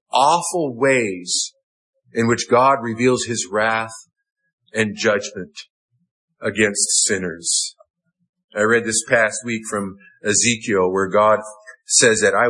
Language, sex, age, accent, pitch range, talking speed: English, male, 50-69, American, 120-180 Hz, 115 wpm